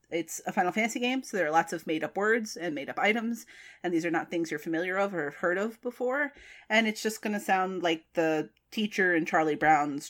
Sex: female